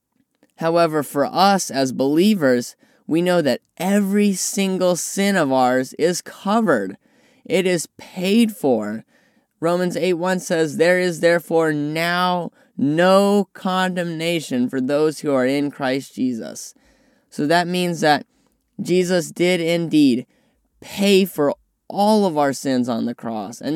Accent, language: American, English